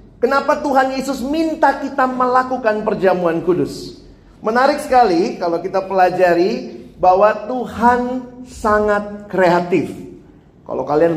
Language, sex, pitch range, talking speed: Indonesian, male, 190-245 Hz, 100 wpm